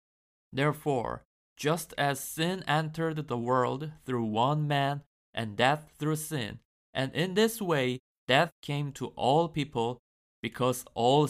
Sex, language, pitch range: male, Korean, 120-155 Hz